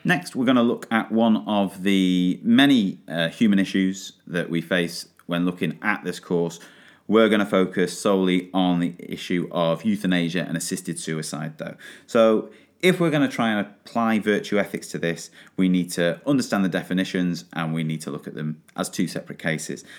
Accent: British